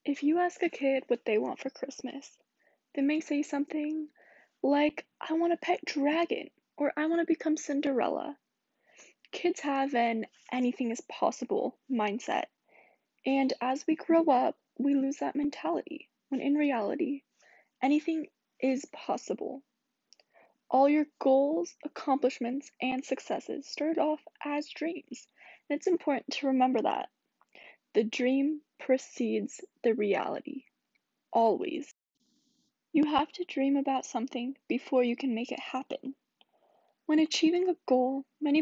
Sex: female